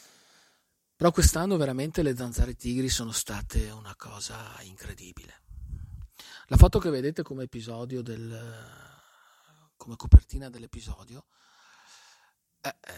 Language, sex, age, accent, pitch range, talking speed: Italian, male, 50-69, native, 110-145 Hz, 100 wpm